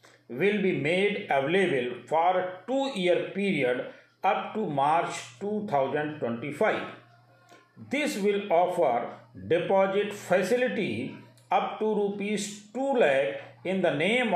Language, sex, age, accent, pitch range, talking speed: Hindi, male, 50-69, native, 150-205 Hz, 100 wpm